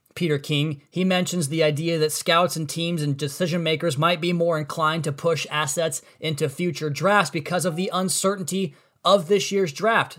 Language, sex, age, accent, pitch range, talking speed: English, male, 20-39, American, 145-180 Hz, 185 wpm